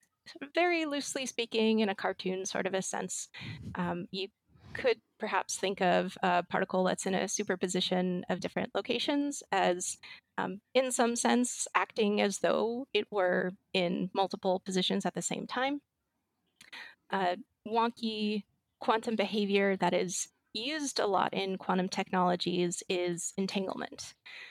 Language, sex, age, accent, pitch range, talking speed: English, female, 30-49, American, 185-230 Hz, 135 wpm